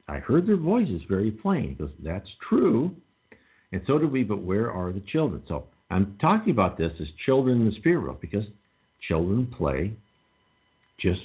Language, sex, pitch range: English, male, 80-115 Hz